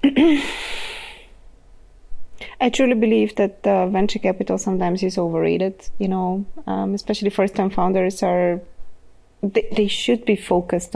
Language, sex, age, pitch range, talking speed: English, female, 20-39, 185-220 Hz, 120 wpm